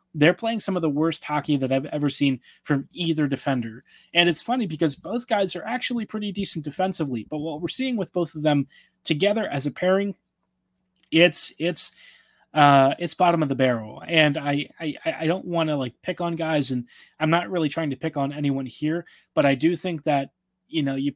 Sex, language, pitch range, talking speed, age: male, English, 145-180 Hz, 210 wpm, 20-39